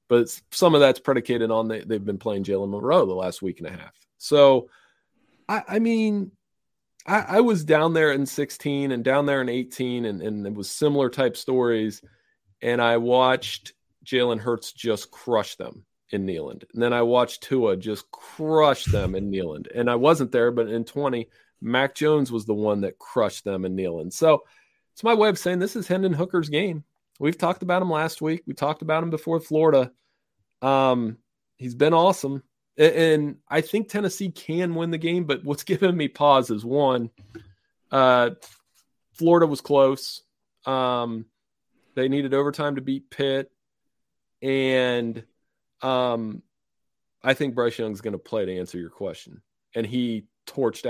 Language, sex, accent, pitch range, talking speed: English, male, American, 115-150 Hz, 170 wpm